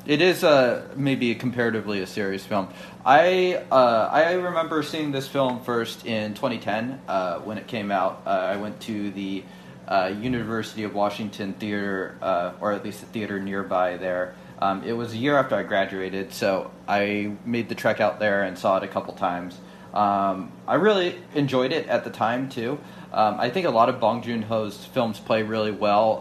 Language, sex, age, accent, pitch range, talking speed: English, male, 30-49, American, 100-130 Hz, 195 wpm